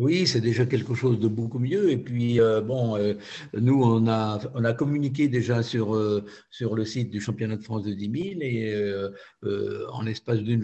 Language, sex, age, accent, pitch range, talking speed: French, male, 50-69, French, 110-125 Hz, 215 wpm